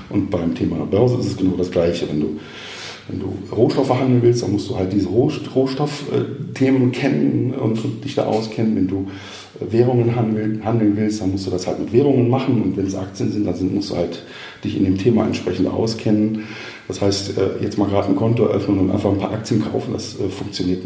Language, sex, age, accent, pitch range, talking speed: German, male, 40-59, German, 95-120 Hz, 205 wpm